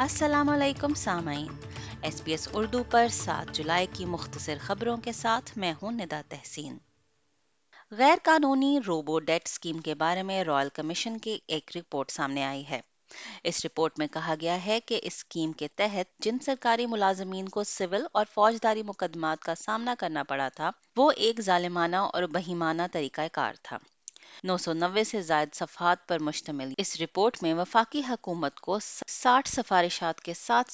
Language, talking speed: Urdu, 140 wpm